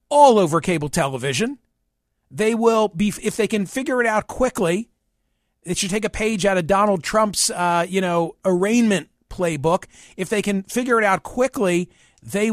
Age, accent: 50-69, American